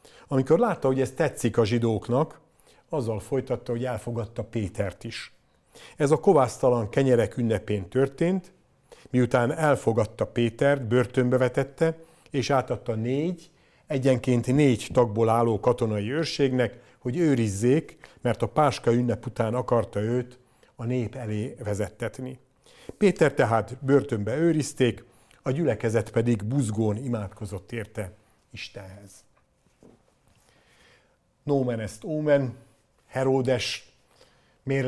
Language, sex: Hungarian, male